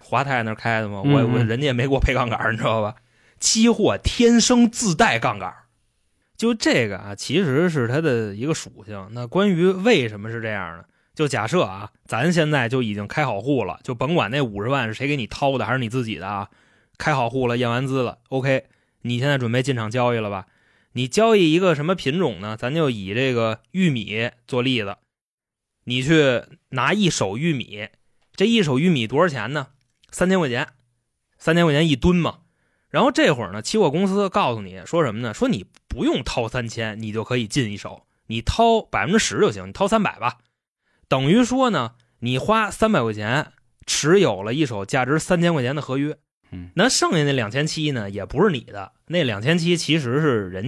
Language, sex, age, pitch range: Chinese, male, 20-39, 115-160 Hz